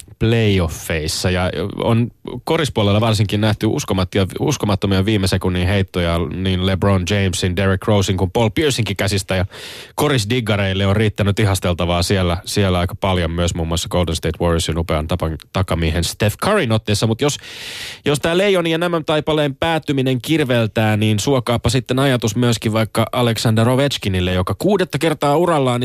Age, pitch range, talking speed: 20-39, 95-125 Hz, 145 wpm